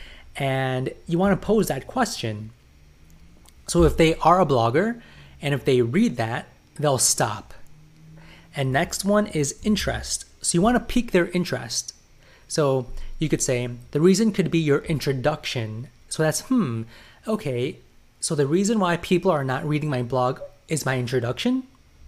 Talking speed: 160 wpm